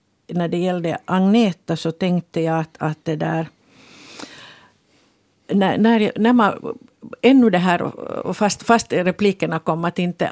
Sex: female